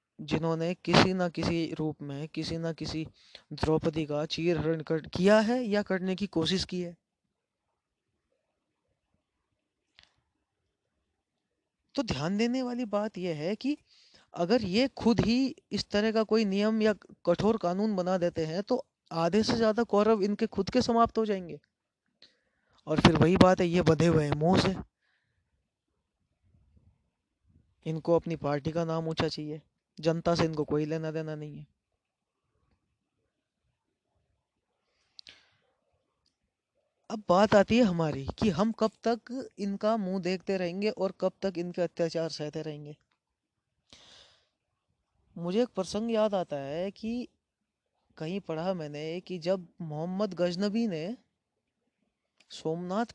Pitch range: 160-215 Hz